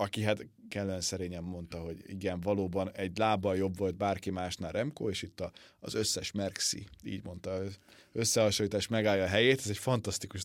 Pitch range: 95-120 Hz